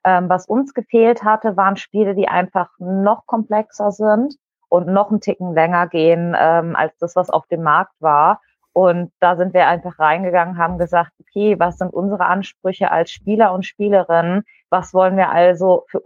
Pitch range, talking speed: 165-185 Hz, 180 wpm